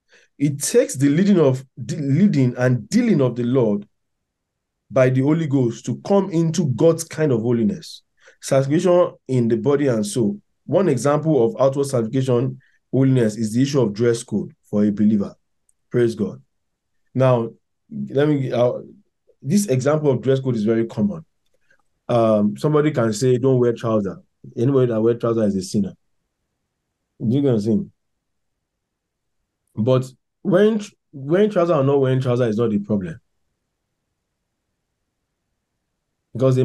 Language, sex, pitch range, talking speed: English, male, 110-140 Hz, 145 wpm